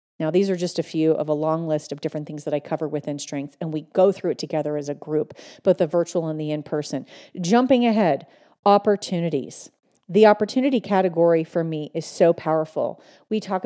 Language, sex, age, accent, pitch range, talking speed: English, female, 40-59, American, 160-200 Hz, 200 wpm